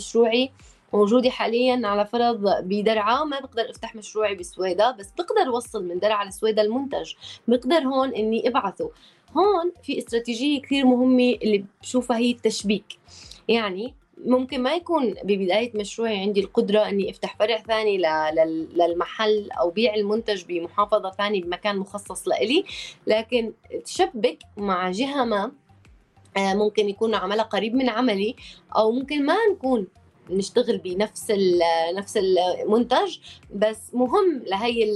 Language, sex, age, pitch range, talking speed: Arabic, female, 20-39, 195-245 Hz, 125 wpm